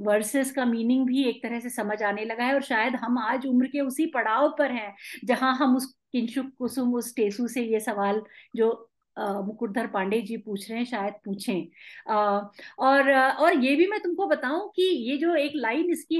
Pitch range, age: 225-300 Hz, 50-69